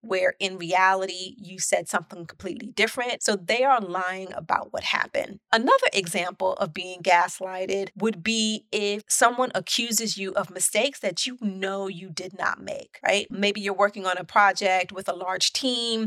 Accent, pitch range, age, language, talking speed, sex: American, 185-215 Hz, 30-49, English, 170 wpm, female